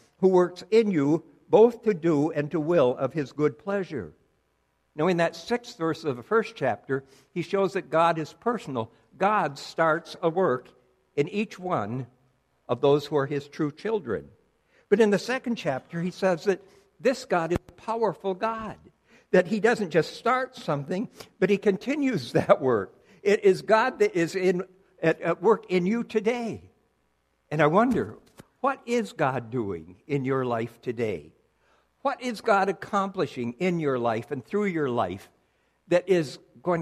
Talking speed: 170 wpm